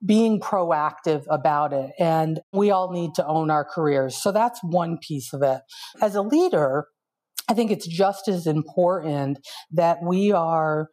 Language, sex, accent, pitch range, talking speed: English, female, American, 155-190 Hz, 165 wpm